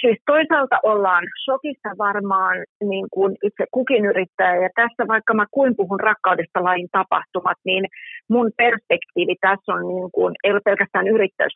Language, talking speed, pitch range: Finnish, 150 wpm, 185-230 Hz